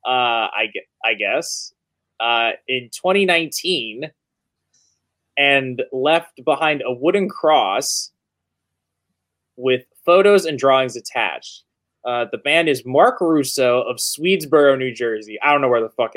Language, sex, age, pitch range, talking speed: English, male, 20-39, 125-165 Hz, 130 wpm